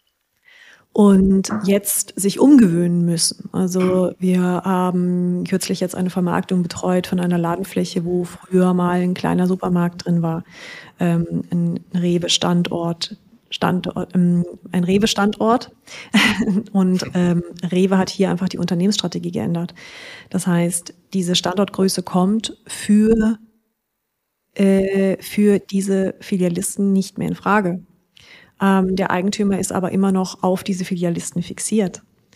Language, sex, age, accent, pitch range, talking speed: German, female, 30-49, German, 180-200 Hz, 115 wpm